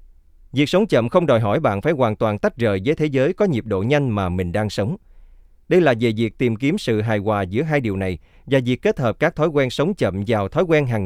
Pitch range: 95-145 Hz